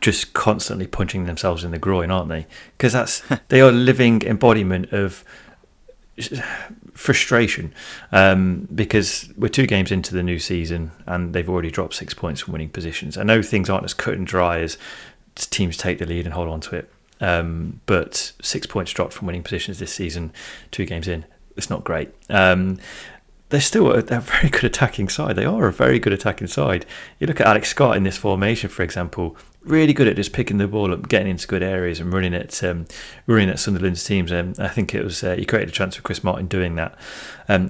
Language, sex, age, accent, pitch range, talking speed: English, male, 30-49, British, 85-105 Hz, 215 wpm